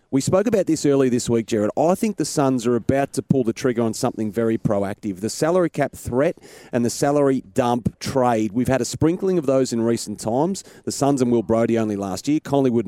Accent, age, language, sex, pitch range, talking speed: Australian, 30-49, English, male, 115-140 Hz, 230 wpm